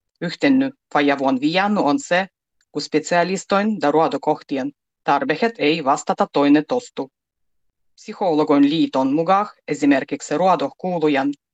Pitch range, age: 150-220 Hz, 30-49